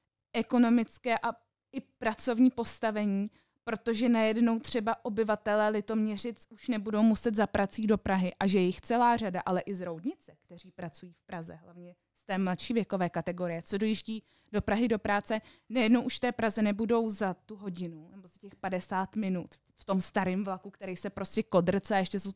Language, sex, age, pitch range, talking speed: Czech, female, 20-39, 200-235 Hz, 175 wpm